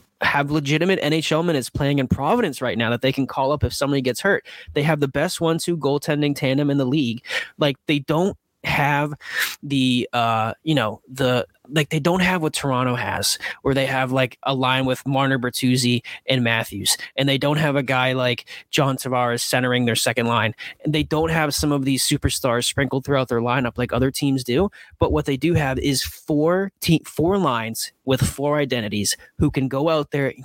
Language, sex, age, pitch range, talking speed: English, male, 20-39, 130-150 Hz, 200 wpm